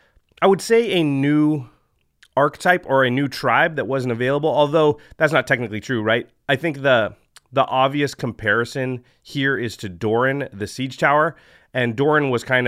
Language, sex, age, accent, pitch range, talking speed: English, male, 30-49, American, 105-135 Hz, 170 wpm